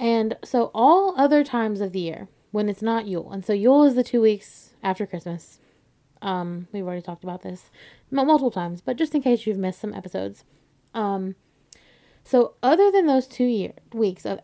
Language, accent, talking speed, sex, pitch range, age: English, American, 190 wpm, female, 190-245 Hz, 20-39